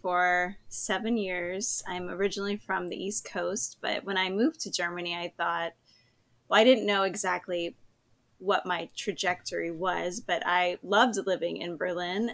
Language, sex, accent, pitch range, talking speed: English, female, American, 175-210 Hz, 155 wpm